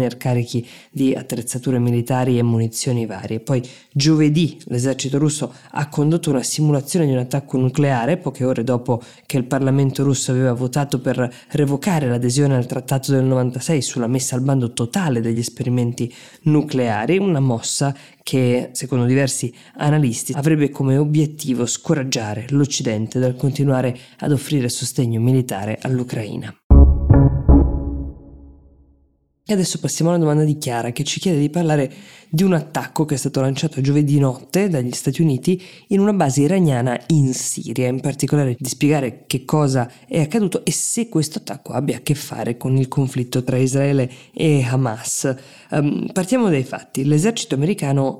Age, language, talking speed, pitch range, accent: 20-39, Italian, 150 wpm, 125-150 Hz, native